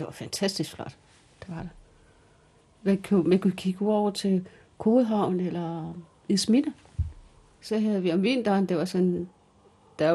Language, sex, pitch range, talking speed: Danish, female, 175-245 Hz, 140 wpm